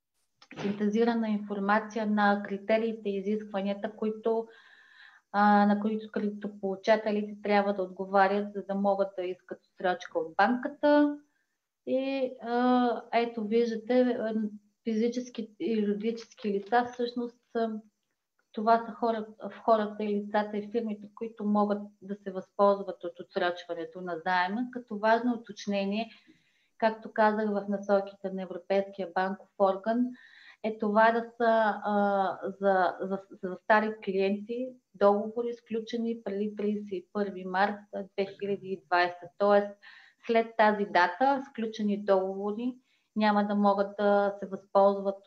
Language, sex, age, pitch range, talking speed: Bulgarian, female, 30-49, 195-230 Hz, 115 wpm